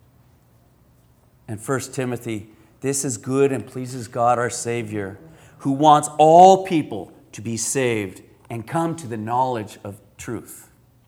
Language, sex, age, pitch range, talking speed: English, male, 40-59, 125-185 Hz, 135 wpm